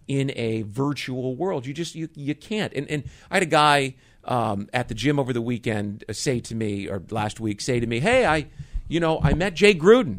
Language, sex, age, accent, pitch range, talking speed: English, male, 50-69, American, 110-155 Hz, 230 wpm